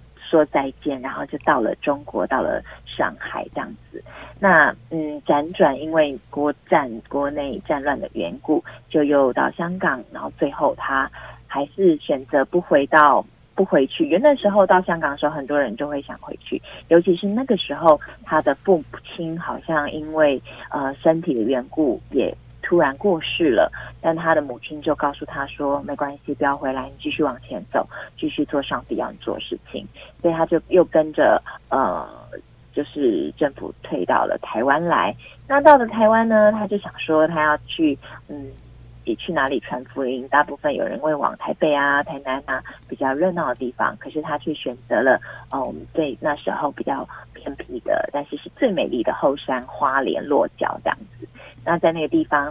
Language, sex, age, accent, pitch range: Chinese, female, 30-49, native, 140-170 Hz